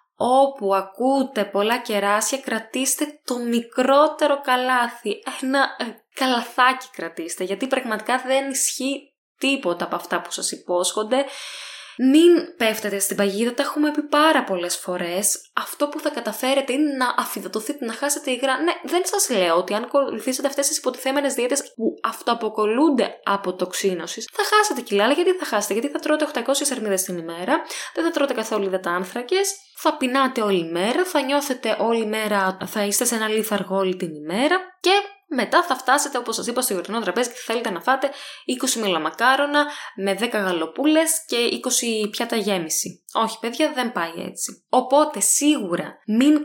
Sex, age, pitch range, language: female, 10-29, 200-275 Hz, Greek